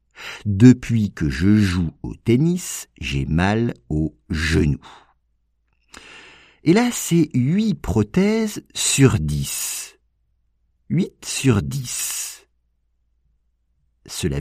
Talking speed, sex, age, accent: 85 wpm, male, 50-69, French